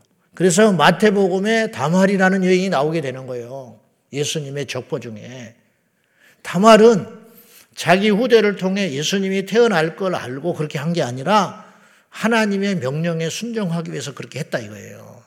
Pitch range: 130-195 Hz